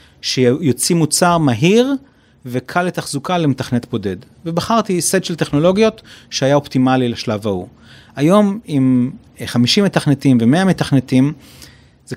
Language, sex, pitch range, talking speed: Hebrew, male, 120-170 Hz, 110 wpm